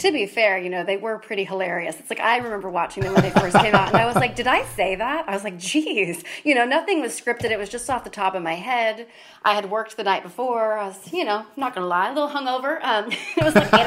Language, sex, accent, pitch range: English, female, American, 190-255 Hz